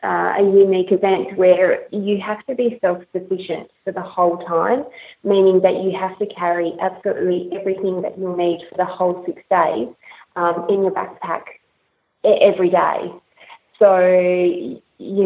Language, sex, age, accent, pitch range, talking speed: English, female, 20-39, Australian, 175-200 Hz, 150 wpm